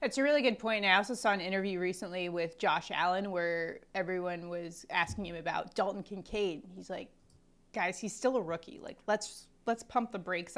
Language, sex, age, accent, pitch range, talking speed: English, female, 20-39, American, 185-225 Hz, 200 wpm